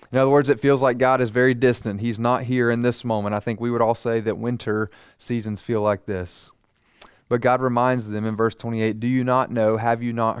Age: 30-49